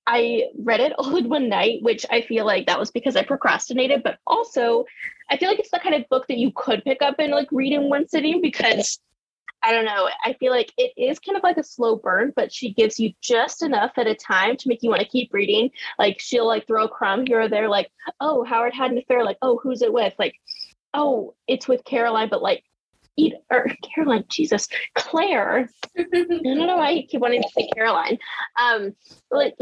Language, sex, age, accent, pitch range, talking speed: English, female, 10-29, American, 225-290 Hz, 225 wpm